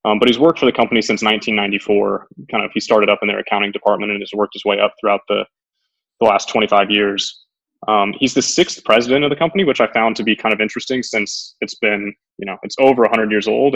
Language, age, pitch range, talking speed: English, 20-39, 105-125 Hz, 245 wpm